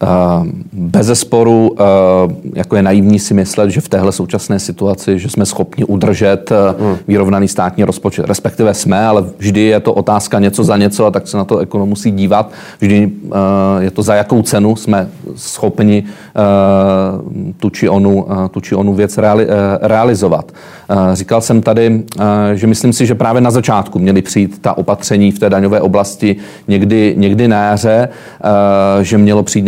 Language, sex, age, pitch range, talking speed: Czech, male, 40-59, 100-115 Hz, 155 wpm